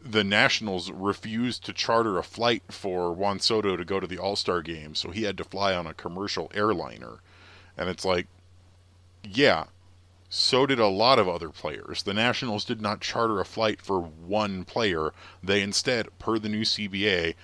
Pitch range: 90-110 Hz